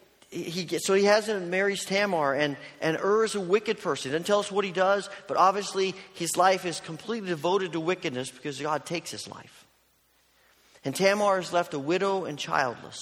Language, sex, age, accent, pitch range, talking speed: English, male, 40-59, American, 160-200 Hz, 205 wpm